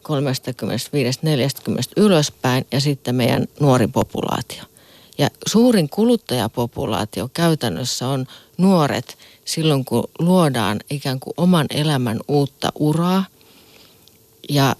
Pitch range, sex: 130-170 Hz, female